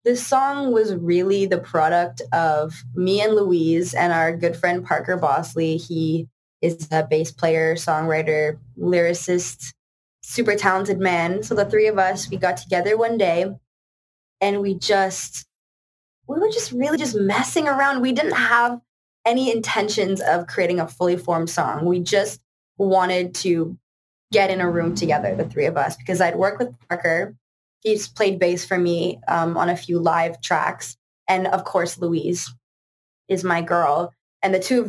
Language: English